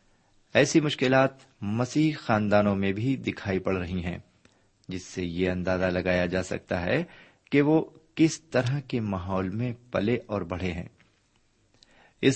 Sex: male